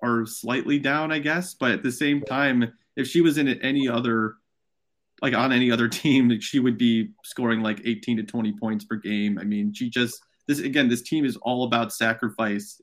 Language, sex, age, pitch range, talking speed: English, male, 30-49, 115-135 Hz, 205 wpm